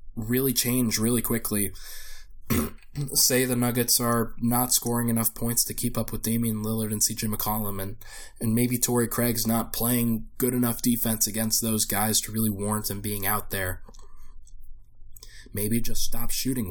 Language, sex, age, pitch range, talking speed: English, male, 10-29, 105-120 Hz, 160 wpm